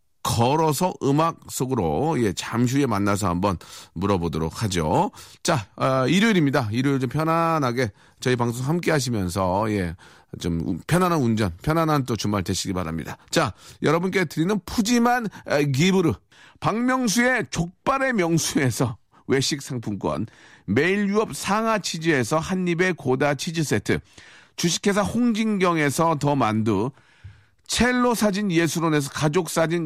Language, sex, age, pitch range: Korean, male, 40-59, 130-195 Hz